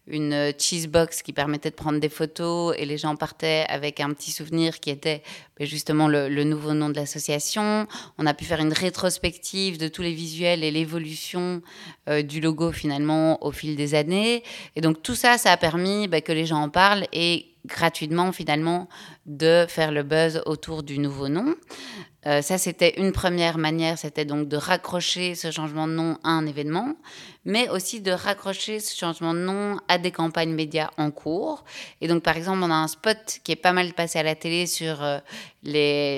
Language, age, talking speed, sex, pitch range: French, 20-39, 200 wpm, female, 150-180 Hz